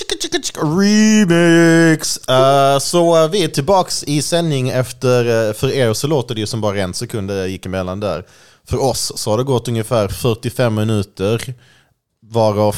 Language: English